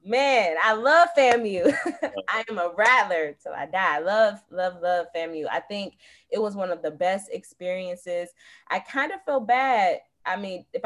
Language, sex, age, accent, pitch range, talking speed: English, female, 20-39, American, 170-250 Hz, 175 wpm